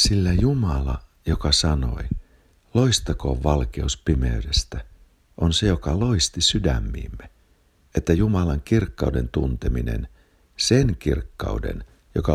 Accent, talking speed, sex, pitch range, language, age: native, 90 wpm, male, 70-90 Hz, Finnish, 60-79